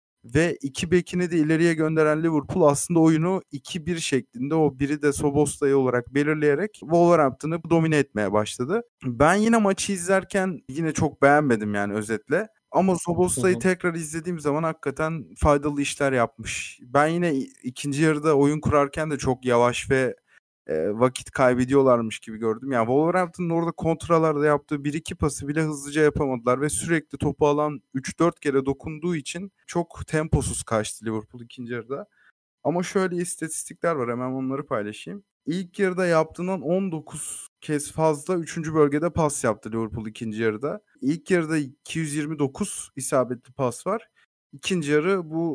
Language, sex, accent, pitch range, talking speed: Turkish, male, native, 130-170 Hz, 140 wpm